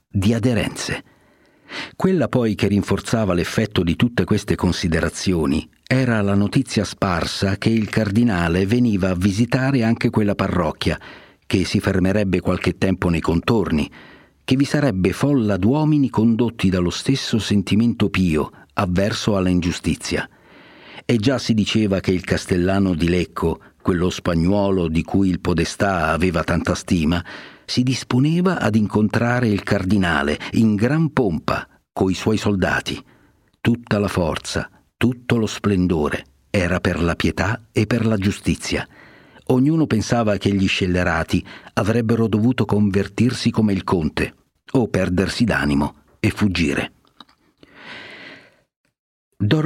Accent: native